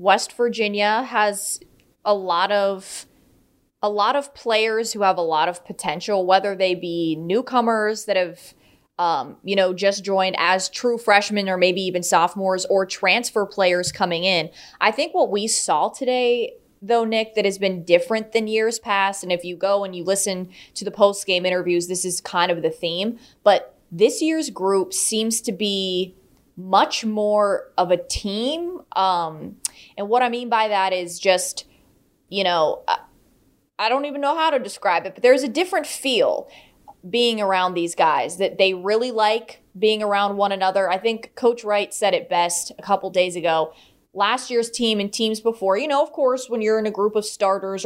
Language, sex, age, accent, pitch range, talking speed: English, female, 20-39, American, 185-225 Hz, 185 wpm